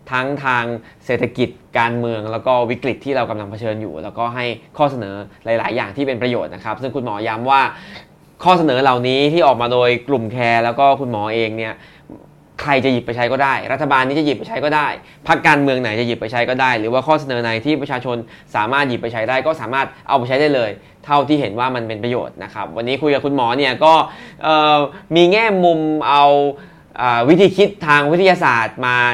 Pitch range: 120-150 Hz